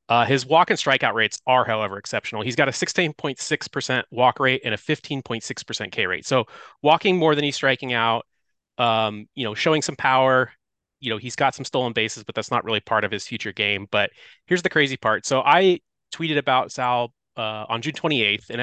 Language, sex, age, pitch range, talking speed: English, male, 30-49, 110-145 Hz, 205 wpm